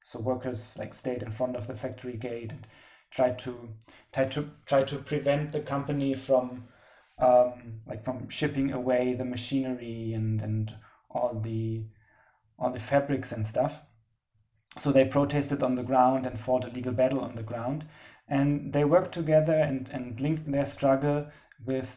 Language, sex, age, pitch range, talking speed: English, male, 30-49, 125-145 Hz, 165 wpm